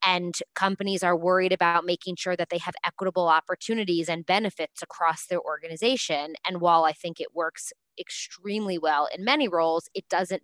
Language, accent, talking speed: English, American, 175 wpm